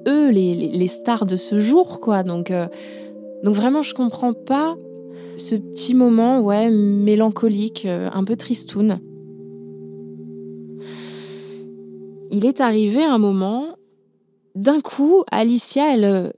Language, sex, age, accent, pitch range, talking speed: French, female, 20-39, French, 180-225 Hz, 115 wpm